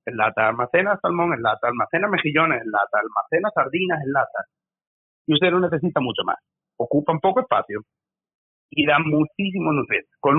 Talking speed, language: 160 wpm, Spanish